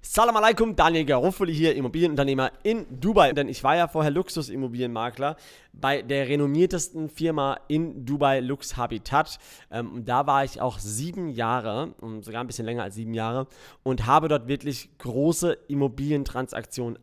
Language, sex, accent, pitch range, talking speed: German, male, German, 125-155 Hz, 155 wpm